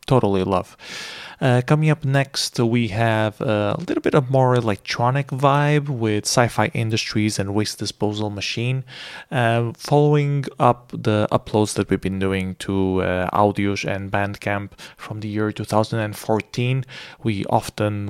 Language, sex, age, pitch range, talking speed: English, male, 30-49, 105-125 Hz, 145 wpm